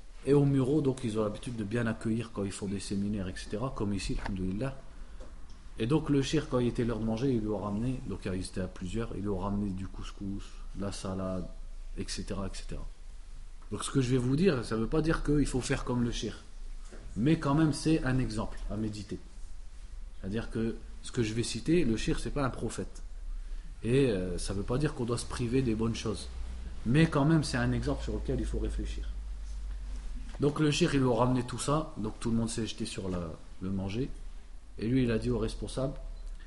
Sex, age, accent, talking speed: male, 40-59, French, 230 wpm